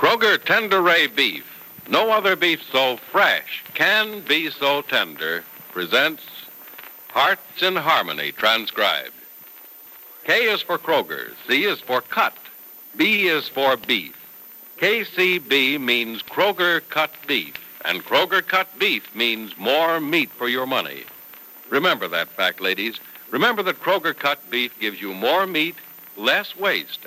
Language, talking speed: English, 130 wpm